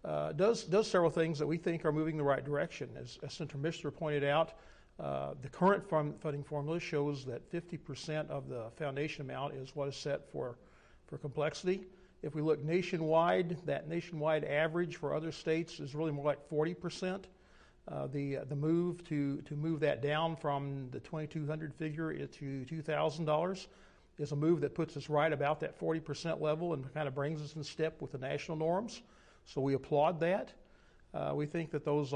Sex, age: male, 50-69